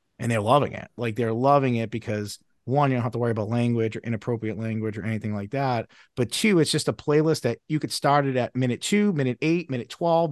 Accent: American